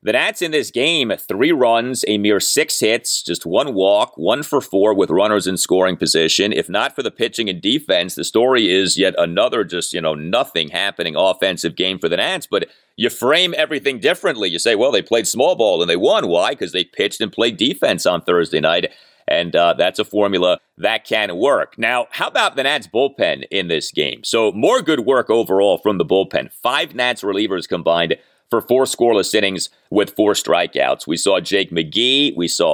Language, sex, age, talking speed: English, male, 40-59, 205 wpm